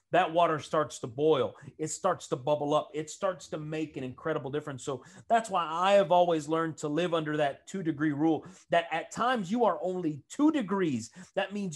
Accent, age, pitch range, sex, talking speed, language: American, 30-49, 155-220 Hz, male, 210 wpm, English